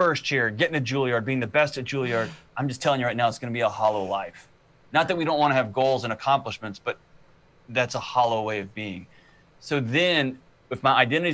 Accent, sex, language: American, male, English